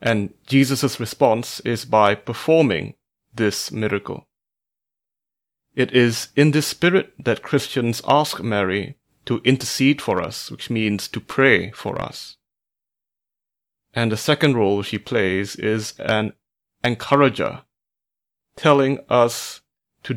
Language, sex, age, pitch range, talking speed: English, male, 30-49, 110-135 Hz, 115 wpm